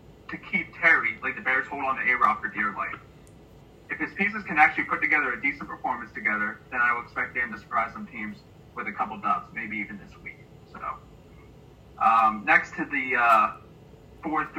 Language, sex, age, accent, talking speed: English, male, 30-49, American, 195 wpm